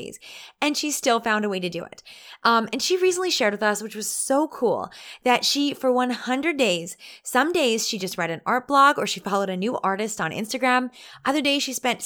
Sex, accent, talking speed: female, American, 225 wpm